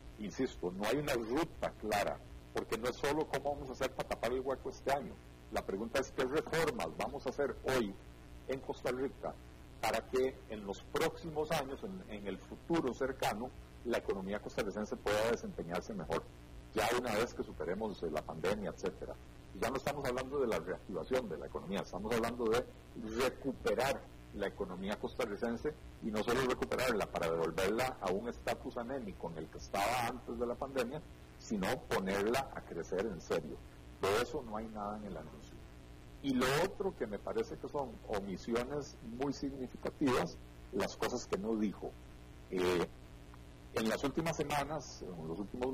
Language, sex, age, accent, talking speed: Spanish, male, 50-69, Mexican, 170 wpm